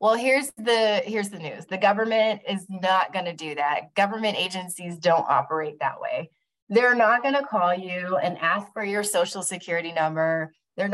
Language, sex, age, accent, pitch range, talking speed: English, female, 20-39, American, 180-225 Hz, 185 wpm